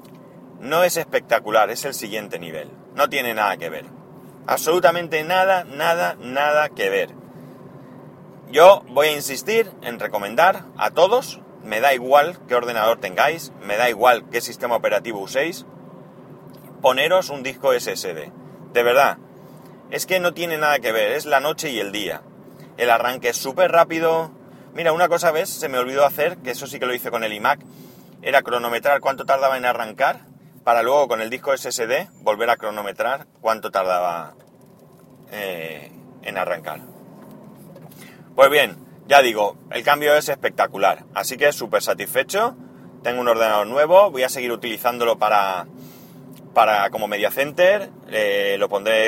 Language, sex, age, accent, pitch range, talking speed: Spanish, male, 30-49, Spanish, 120-175 Hz, 155 wpm